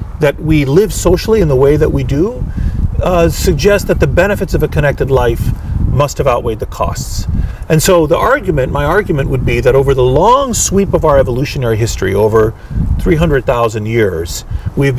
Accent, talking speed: American, 180 wpm